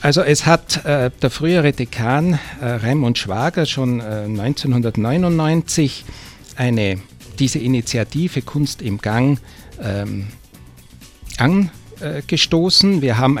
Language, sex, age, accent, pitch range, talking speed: German, male, 50-69, Austrian, 110-140 Hz, 105 wpm